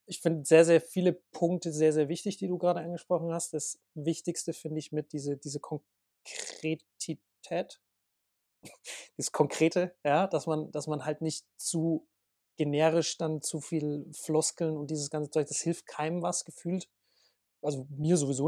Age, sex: 30-49, male